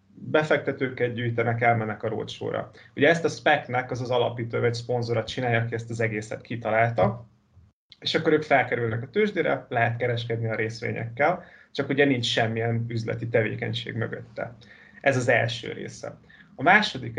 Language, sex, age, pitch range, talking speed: Hungarian, male, 30-49, 115-135 Hz, 150 wpm